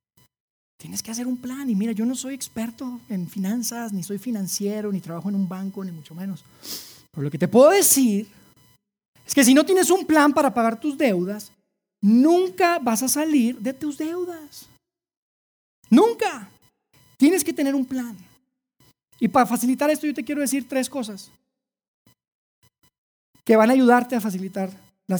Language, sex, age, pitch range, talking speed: Spanish, male, 30-49, 205-265 Hz, 170 wpm